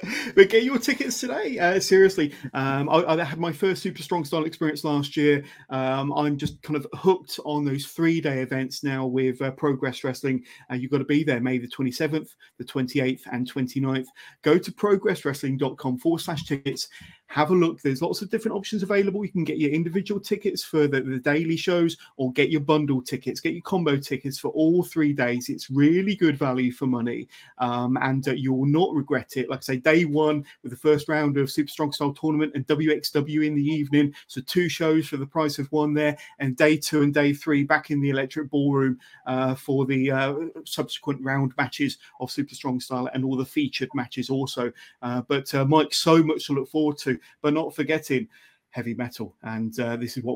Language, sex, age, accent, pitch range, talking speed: English, male, 30-49, British, 130-155 Hz, 210 wpm